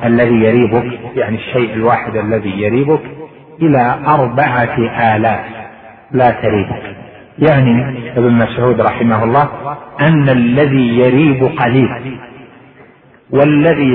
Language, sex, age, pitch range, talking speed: Arabic, male, 50-69, 115-145 Hz, 90 wpm